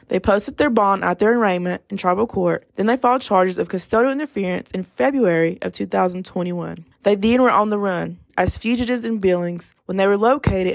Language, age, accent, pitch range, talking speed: English, 20-39, American, 185-225 Hz, 195 wpm